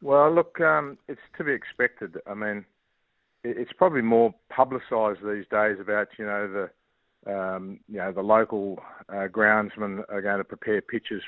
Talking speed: 165 wpm